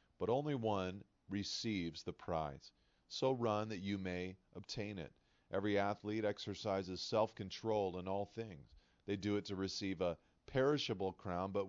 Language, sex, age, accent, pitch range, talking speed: English, male, 40-59, American, 90-115 Hz, 150 wpm